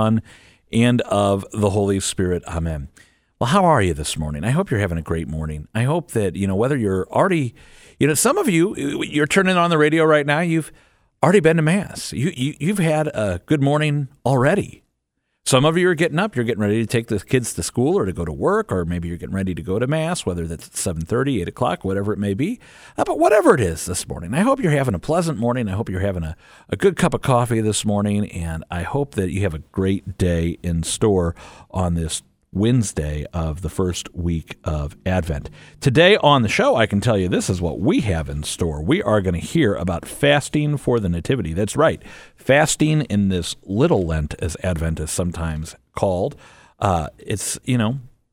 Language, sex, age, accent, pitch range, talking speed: English, male, 50-69, American, 85-135 Hz, 220 wpm